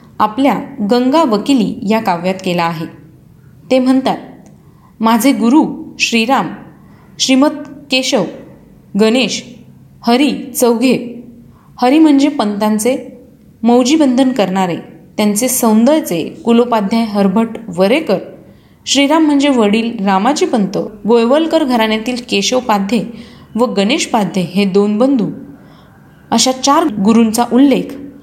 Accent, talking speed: native, 95 wpm